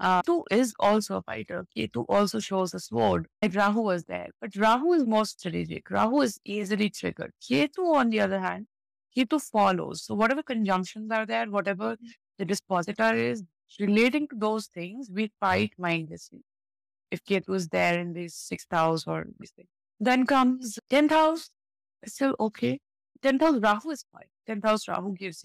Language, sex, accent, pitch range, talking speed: English, female, Indian, 175-220 Hz, 165 wpm